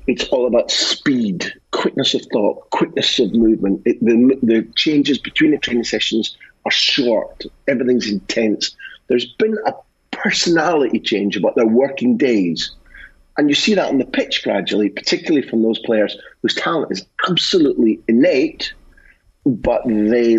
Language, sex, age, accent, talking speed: English, male, 40-59, British, 145 wpm